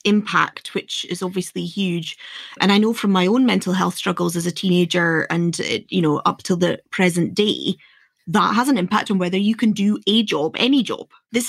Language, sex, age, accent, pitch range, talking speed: English, female, 20-39, British, 180-210 Hz, 205 wpm